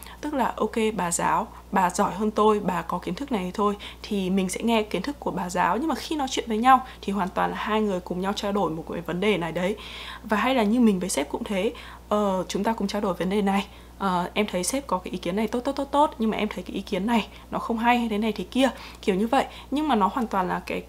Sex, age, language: female, 20-39, Vietnamese